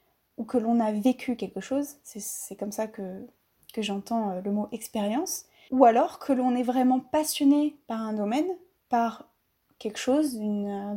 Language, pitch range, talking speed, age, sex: French, 215-275 Hz, 175 wpm, 20-39, female